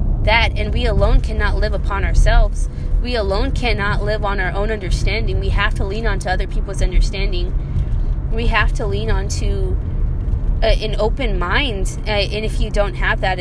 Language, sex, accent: English, female, American